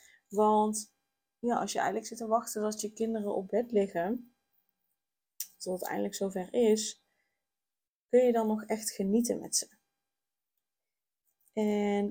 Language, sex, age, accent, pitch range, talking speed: Dutch, female, 20-39, Dutch, 200-230 Hz, 140 wpm